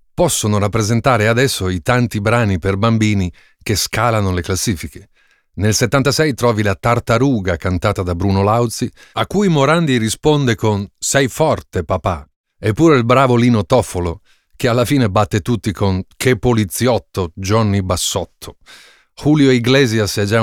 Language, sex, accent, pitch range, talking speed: Italian, male, native, 95-125 Hz, 140 wpm